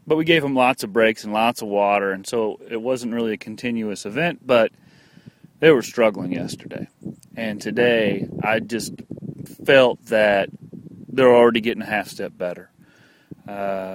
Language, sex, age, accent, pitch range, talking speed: English, male, 30-49, American, 105-130 Hz, 165 wpm